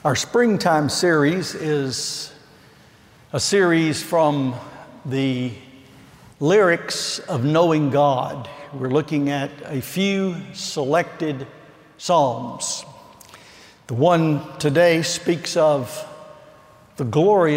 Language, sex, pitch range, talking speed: English, male, 135-160 Hz, 90 wpm